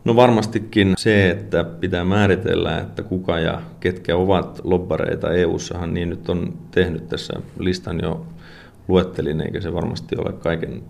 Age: 30-49